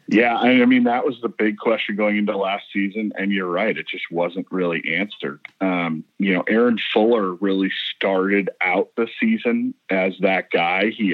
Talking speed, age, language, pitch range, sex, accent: 190 wpm, 40-59, English, 90-100 Hz, male, American